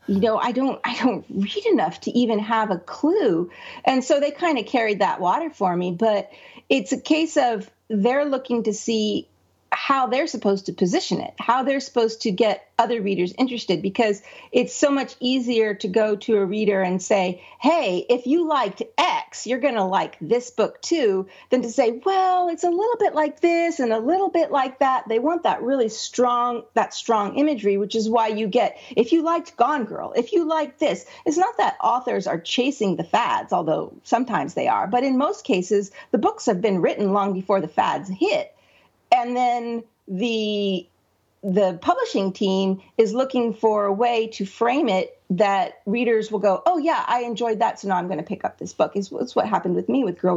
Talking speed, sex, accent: 205 wpm, female, American